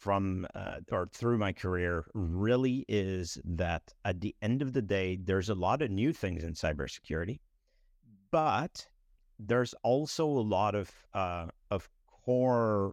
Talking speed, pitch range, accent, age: 150 wpm, 90-110 Hz, American, 50-69